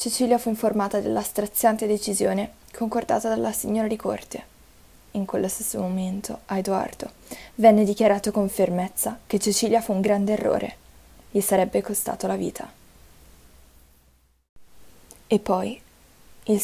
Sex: female